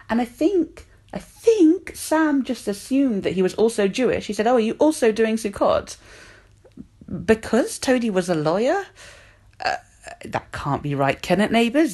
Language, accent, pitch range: English, British, 145-210 Hz